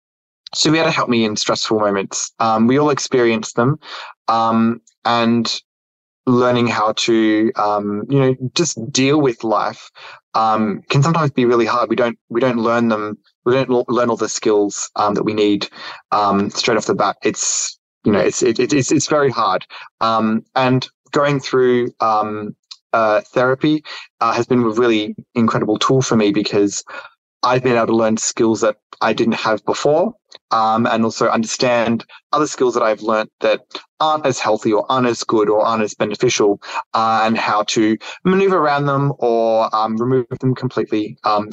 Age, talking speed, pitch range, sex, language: 20-39, 180 wpm, 110-130 Hz, male, English